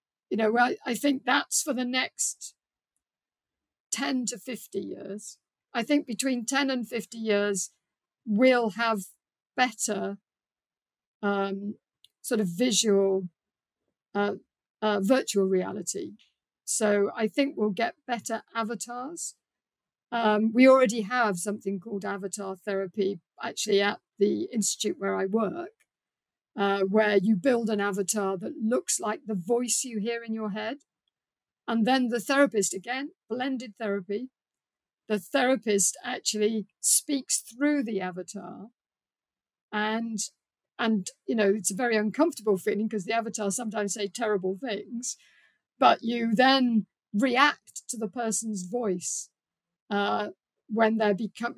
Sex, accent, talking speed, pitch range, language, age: female, British, 130 wpm, 200-245 Hz, English, 50-69